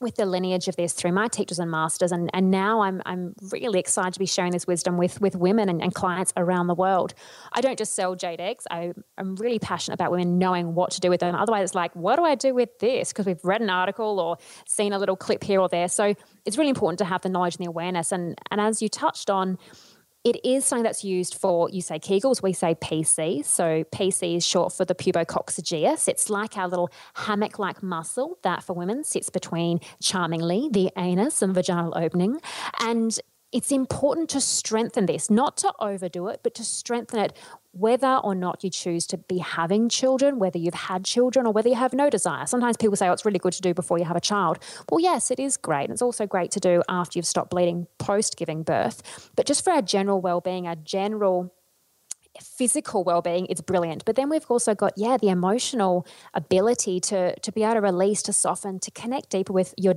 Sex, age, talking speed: female, 20-39, 225 wpm